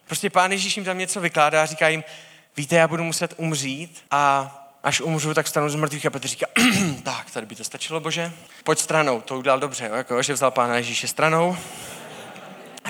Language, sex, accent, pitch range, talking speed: Czech, male, native, 130-165 Hz, 195 wpm